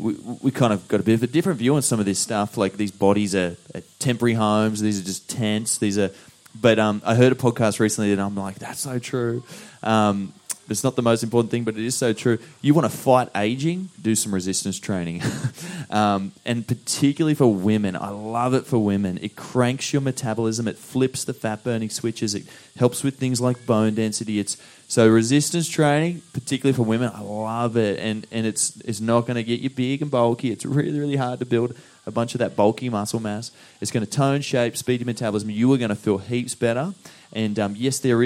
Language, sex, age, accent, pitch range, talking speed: English, male, 20-39, Australian, 105-130 Hz, 225 wpm